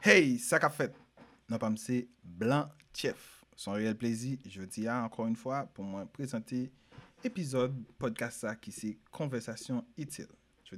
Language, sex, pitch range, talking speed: French, male, 105-130 Hz, 150 wpm